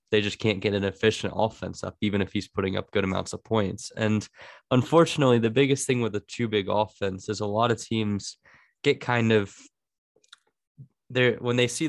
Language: English